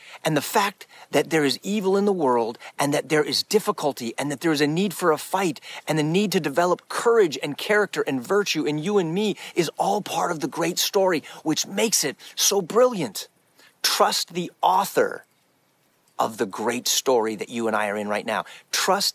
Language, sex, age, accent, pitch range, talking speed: English, male, 40-59, American, 115-185 Hz, 205 wpm